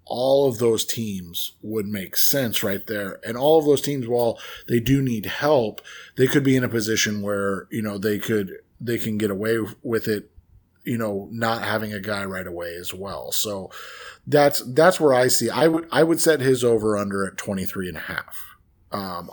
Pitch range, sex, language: 100-125 Hz, male, English